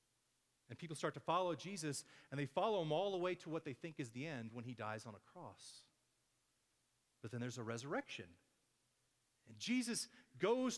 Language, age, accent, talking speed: English, 40-59, American, 190 wpm